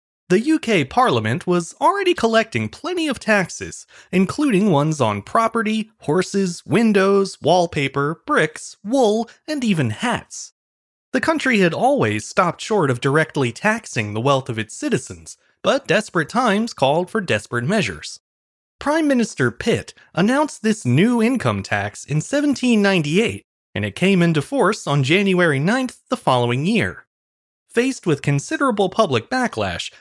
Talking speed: 135 wpm